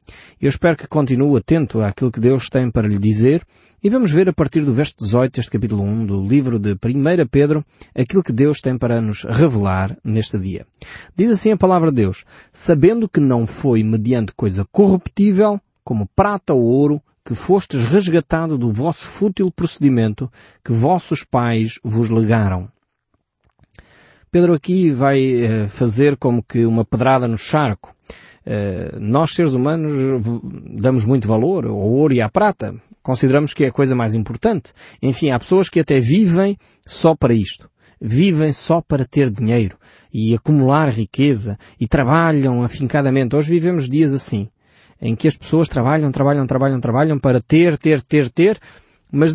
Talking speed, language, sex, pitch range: 160 wpm, Portuguese, male, 115-165 Hz